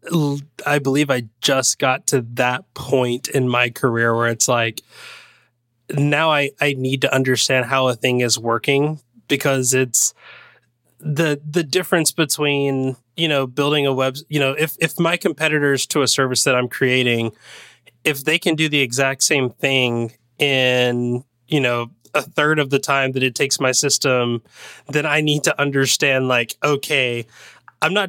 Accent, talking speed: American, 165 wpm